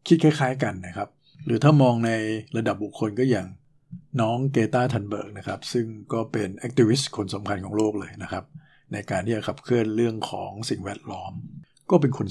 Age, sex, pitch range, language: 60-79, male, 105-130 Hz, Thai